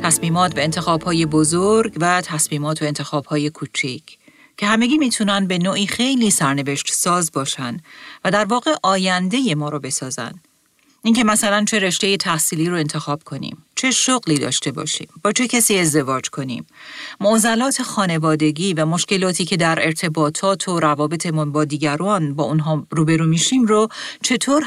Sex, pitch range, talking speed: female, 155-205 Hz, 145 wpm